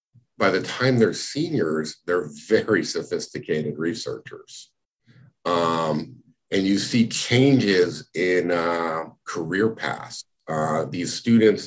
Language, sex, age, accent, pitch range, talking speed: English, male, 50-69, American, 85-110 Hz, 110 wpm